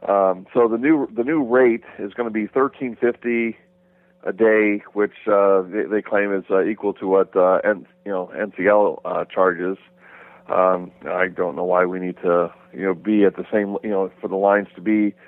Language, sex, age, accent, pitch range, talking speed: English, male, 40-59, American, 95-110 Hz, 205 wpm